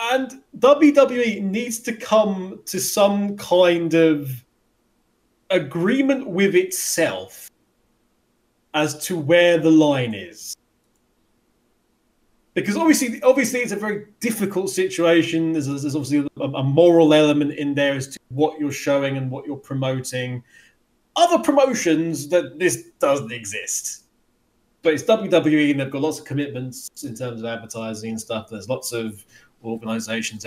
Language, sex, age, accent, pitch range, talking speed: English, male, 20-39, British, 120-190 Hz, 135 wpm